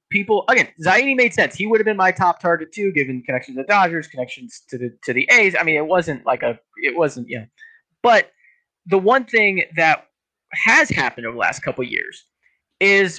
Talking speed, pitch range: 210 wpm, 135-205 Hz